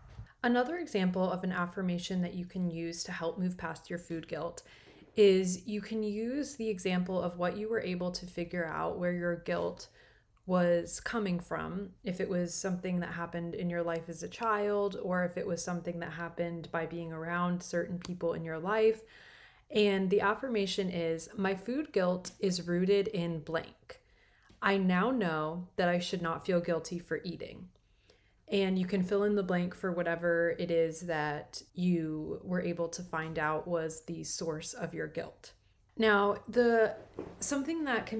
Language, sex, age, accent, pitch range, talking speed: English, female, 20-39, American, 170-200 Hz, 180 wpm